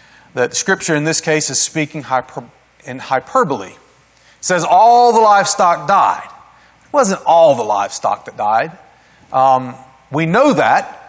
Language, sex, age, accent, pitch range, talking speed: English, male, 40-59, American, 150-205 Hz, 145 wpm